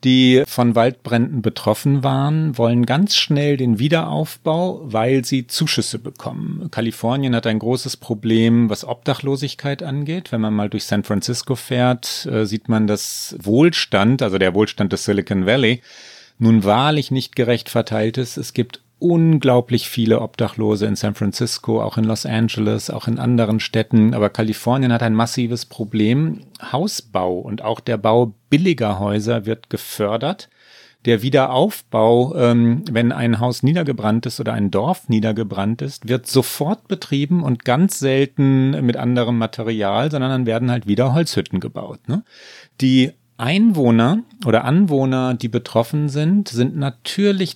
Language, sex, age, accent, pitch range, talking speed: German, male, 40-59, German, 115-140 Hz, 145 wpm